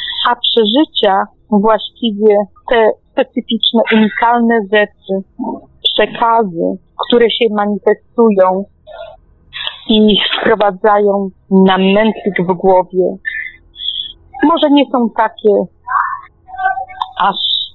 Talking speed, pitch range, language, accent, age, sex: 75 wpm, 200-250 Hz, Polish, native, 40-59, female